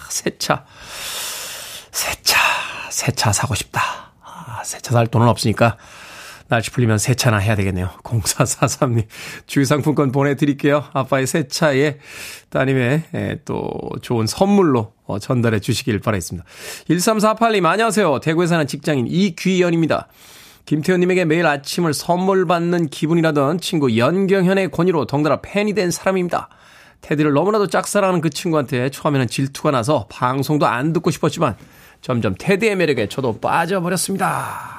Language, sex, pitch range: Korean, male, 120-165 Hz